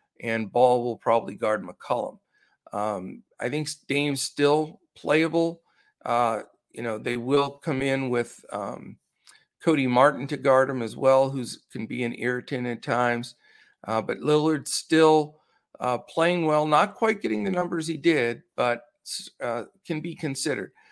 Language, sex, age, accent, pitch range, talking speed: English, male, 50-69, American, 125-160 Hz, 155 wpm